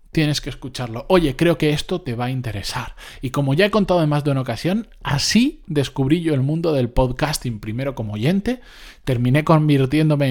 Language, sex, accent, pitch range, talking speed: Spanish, male, Spanish, 130-180 Hz, 190 wpm